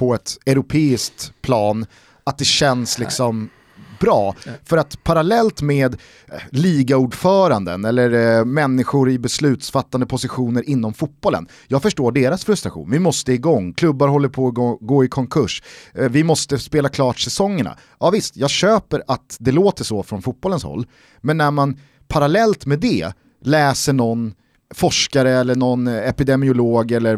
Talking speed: 145 wpm